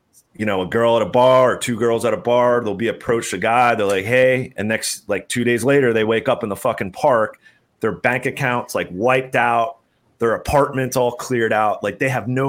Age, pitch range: 30-49, 105-130 Hz